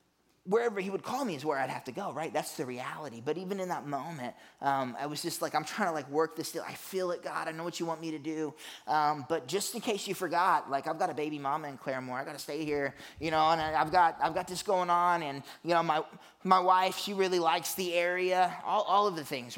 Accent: American